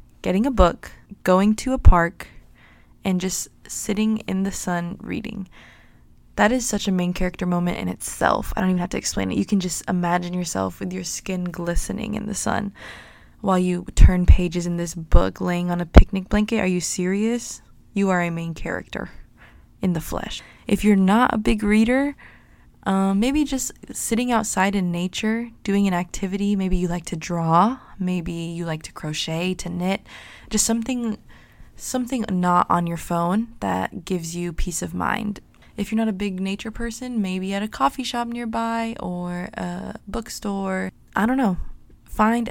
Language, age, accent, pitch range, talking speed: English, 20-39, American, 175-215 Hz, 180 wpm